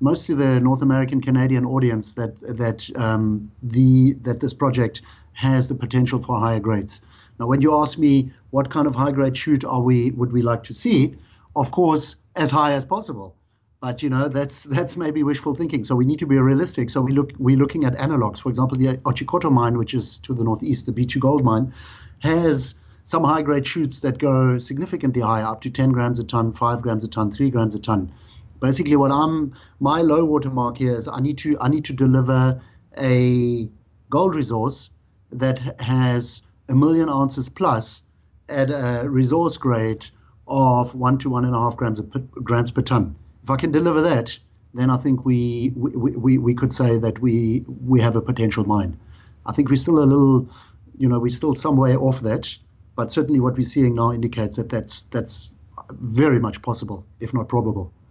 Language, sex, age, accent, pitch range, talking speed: English, male, 60-79, German, 115-140 Hz, 195 wpm